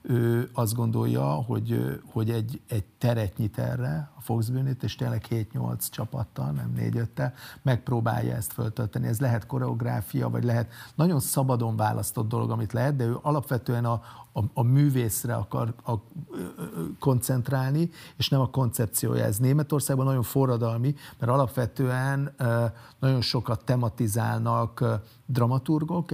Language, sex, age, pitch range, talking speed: Hungarian, male, 50-69, 115-135 Hz, 130 wpm